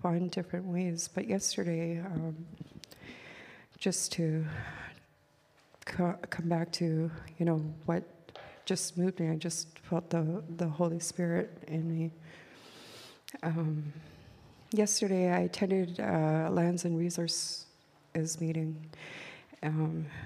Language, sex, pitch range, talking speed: English, female, 160-180 Hz, 110 wpm